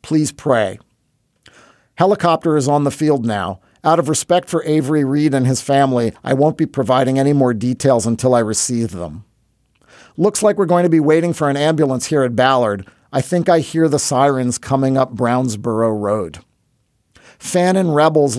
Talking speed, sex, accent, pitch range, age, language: 175 wpm, male, American, 120-155 Hz, 50-69, English